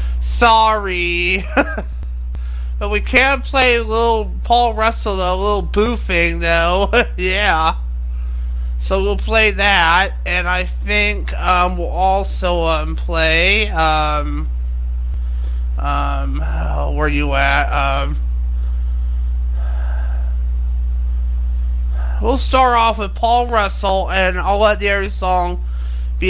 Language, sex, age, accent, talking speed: English, male, 30-49, American, 105 wpm